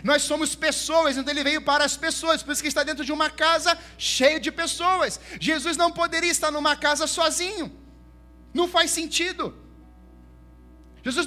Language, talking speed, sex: Portuguese, 165 wpm, male